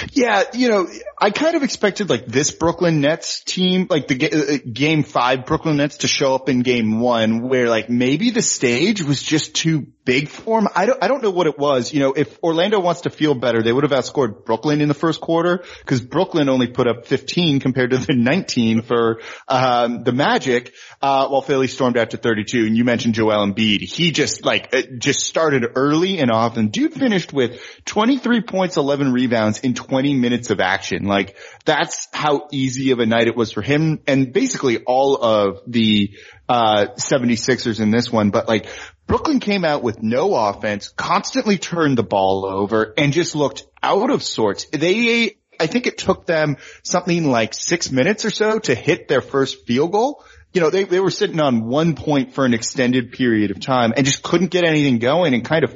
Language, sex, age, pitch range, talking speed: English, male, 30-49, 120-170 Hz, 205 wpm